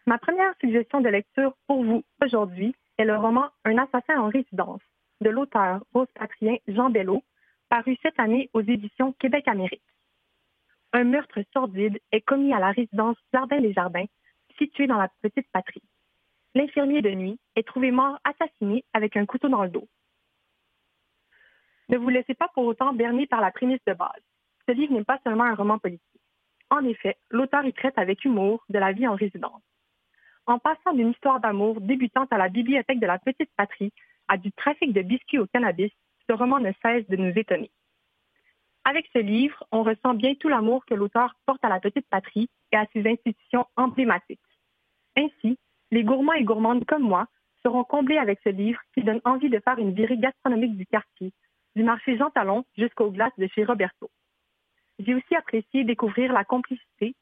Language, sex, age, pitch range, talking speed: French, female, 30-49, 215-265 Hz, 175 wpm